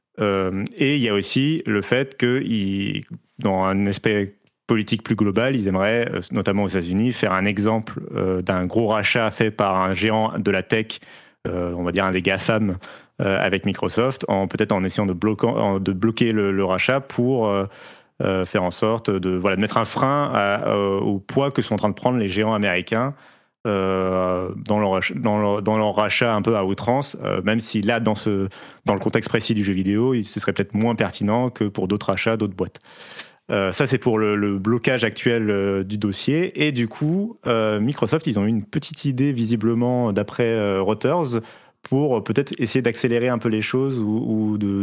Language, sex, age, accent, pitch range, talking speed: French, male, 30-49, French, 100-125 Hz, 205 wpm